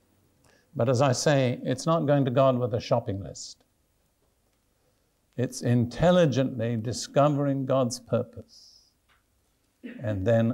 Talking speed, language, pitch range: 115 wpm, English, 115-145 Hz